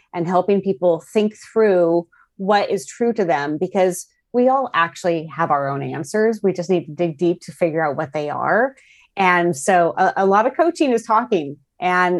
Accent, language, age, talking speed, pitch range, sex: American, English, 30-49, 195 wpm, 165-205 Hz, female